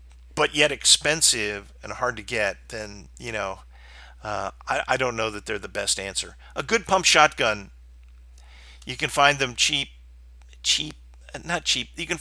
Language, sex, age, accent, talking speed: English, male, 50-69, American, 165 wpm